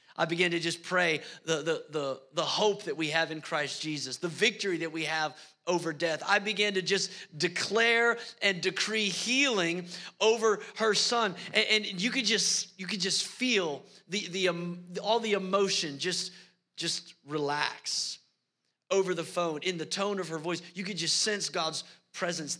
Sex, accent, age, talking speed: male, American, 30-49, 180 wpm